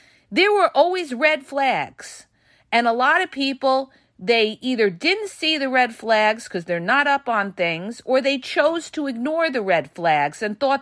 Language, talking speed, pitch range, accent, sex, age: English, 185 wpm, 205-310 Hz, American, female, 40-59